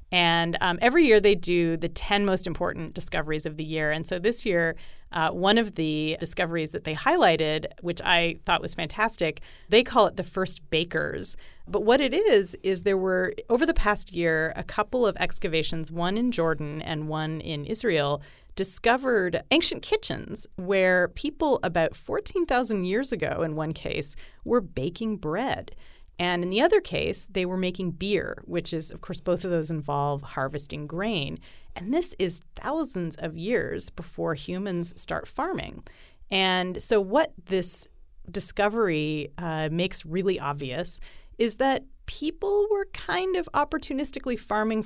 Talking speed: 160 wpm